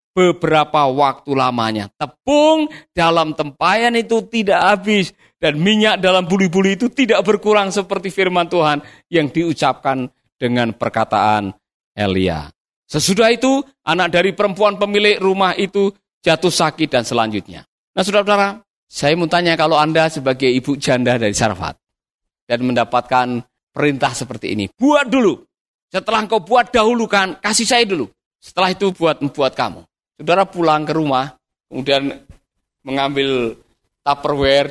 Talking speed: 130 wpm